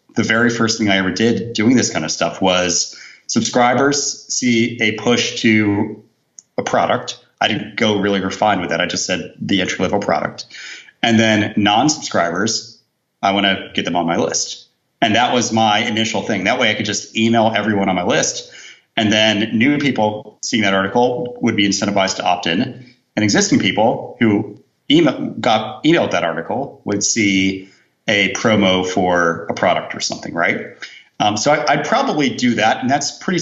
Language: English